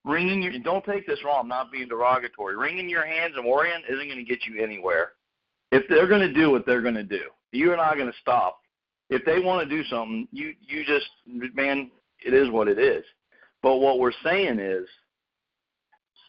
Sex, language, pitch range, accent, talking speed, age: male, English, 125-155 Hz, American, 210 wpm, 40-59